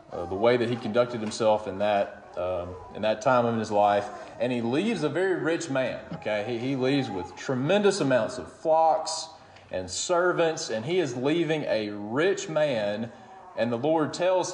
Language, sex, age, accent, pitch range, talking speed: English, male, 30-49, American, 115-145 Hz, 185 wpm